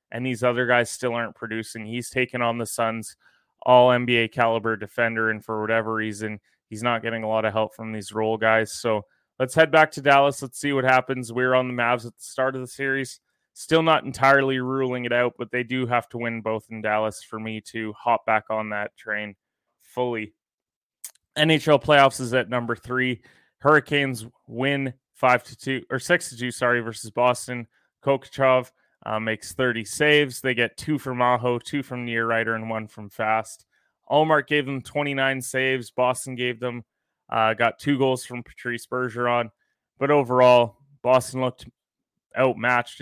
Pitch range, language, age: 115-130 Hz, English, 20-39